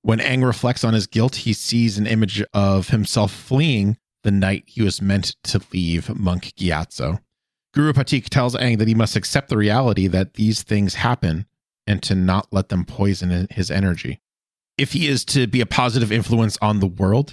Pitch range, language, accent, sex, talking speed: 95-120 Hz, English, American, male, 190 wpm